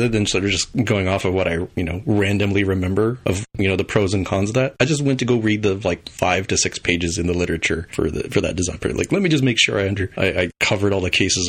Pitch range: 90-115 Hz